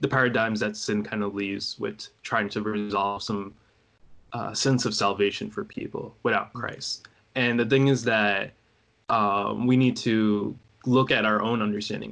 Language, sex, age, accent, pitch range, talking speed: English, male, 20-39, American, 105-110 Hz, 170 wpm